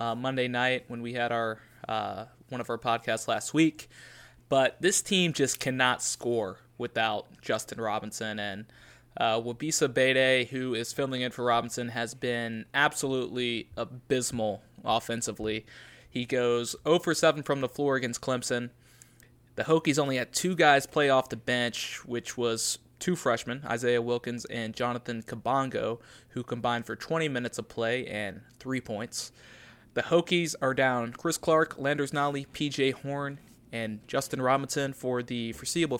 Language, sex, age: English, male, 20-39